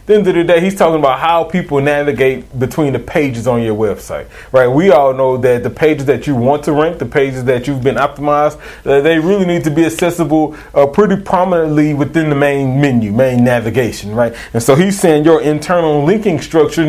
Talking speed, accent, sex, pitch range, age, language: 210 wpm, American, male, 145-185 Hz, 30-49, English